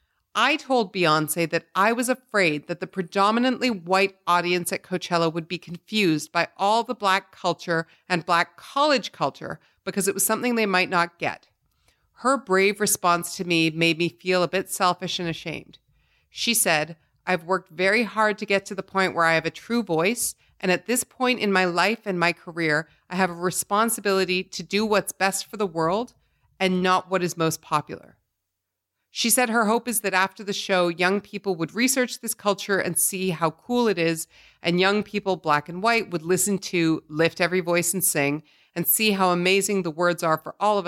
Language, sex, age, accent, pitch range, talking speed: English, female, 40-59, American, 165-200 Hz, 200 wpm